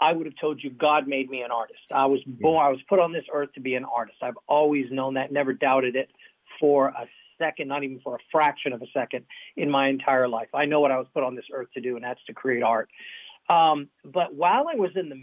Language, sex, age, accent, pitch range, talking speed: English, male, 40-59, American, 135-170 Hz, 270 wpm